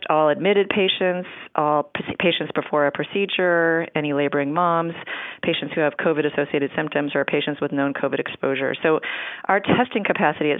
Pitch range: 145-170 Hz